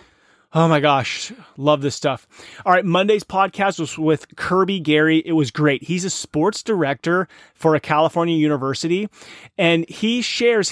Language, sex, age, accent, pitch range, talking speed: English, male, 30-49, American, 140-175 Hz, 155 wpm